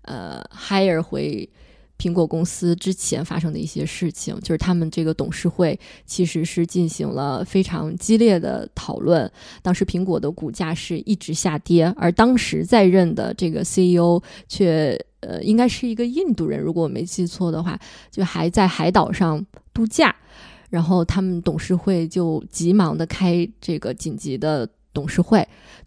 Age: 20-39